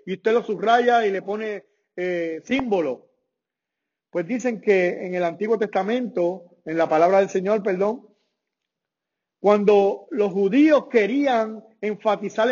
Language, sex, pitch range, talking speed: English, male, 175-230 Hz, 130 wpm